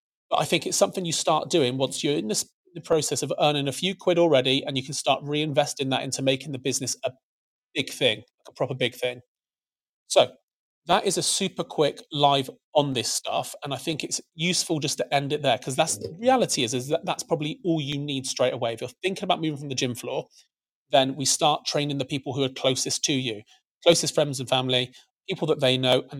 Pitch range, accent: 130-155 Hz, British